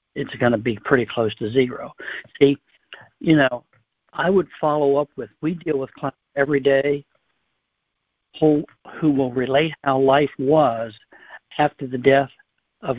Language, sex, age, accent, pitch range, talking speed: English, male, 60-79, American, 125-145 Hz, 150 wpm